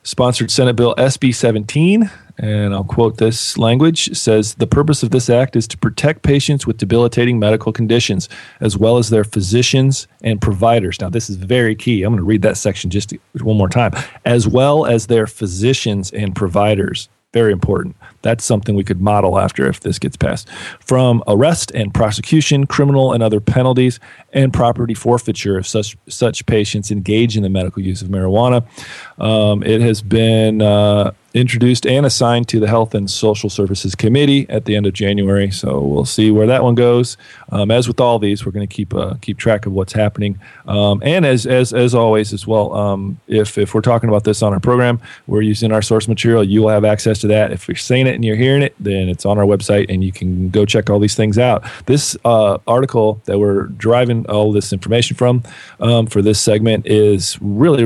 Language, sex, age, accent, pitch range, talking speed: English, male, 40-59, American, 105-120 Hz, 200 wpm